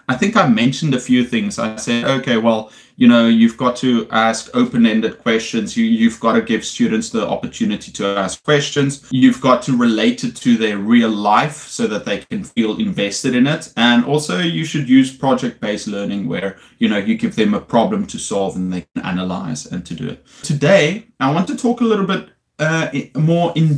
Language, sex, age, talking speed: English, male, 30-49, 205 wpm